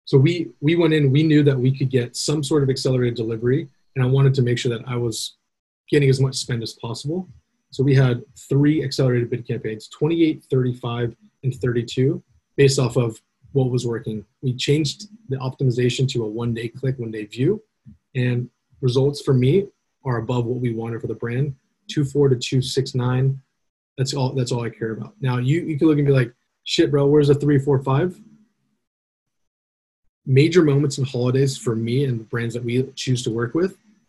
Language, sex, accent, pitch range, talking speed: English, male, American, 120-145 Hz, 190 wpm